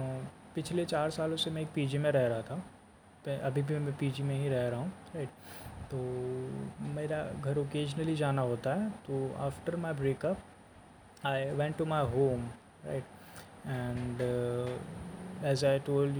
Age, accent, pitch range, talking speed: 20-39, native, 130-155 Hz, 160 wpm